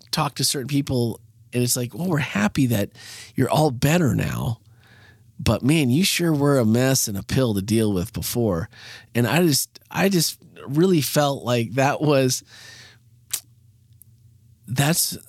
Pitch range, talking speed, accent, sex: 110-135 Hz, 155 wpm, American, male